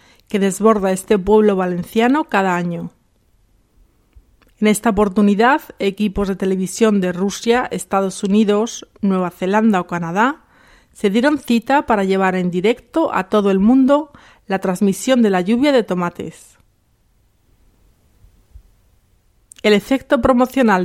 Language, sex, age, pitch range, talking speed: Spanish, female, 40-59, 185-230 Hz, 120 wpm